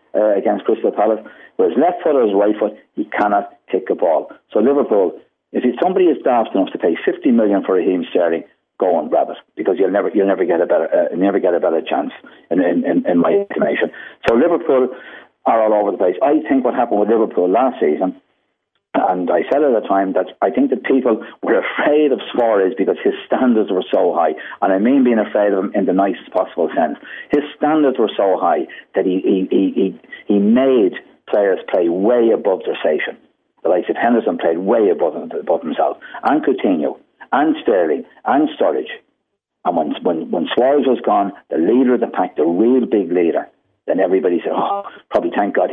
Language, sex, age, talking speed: English, male, 50-69, 210 wpm